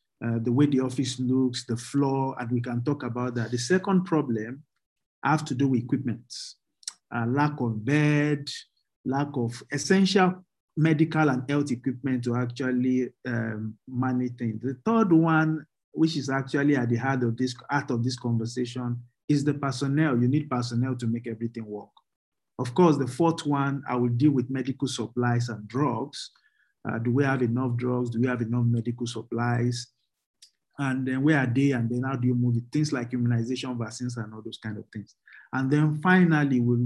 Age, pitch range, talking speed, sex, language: 50-69, 120-150 Hz, 180 wpm, male, English